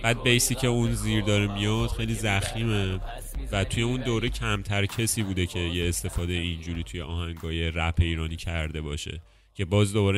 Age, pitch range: 30-49, 85-110 Hz